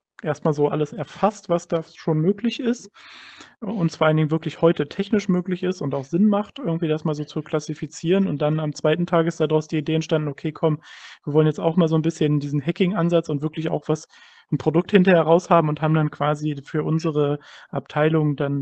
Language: German